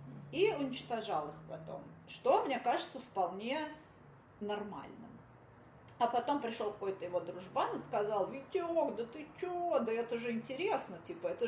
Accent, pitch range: native, 210-290 Hz